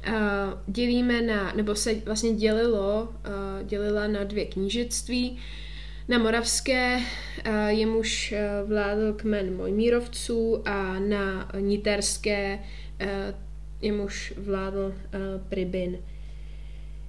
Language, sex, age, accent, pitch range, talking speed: Czech, female, 20-39, native, 205-235 Hz, 100 wpm